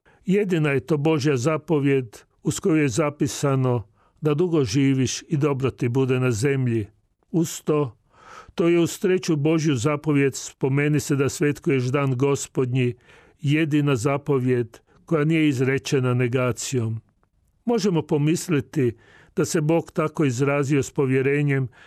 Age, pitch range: 40-59, 125-155 Hz